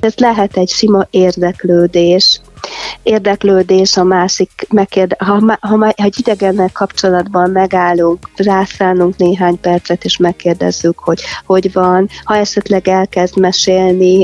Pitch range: 175-195 Hz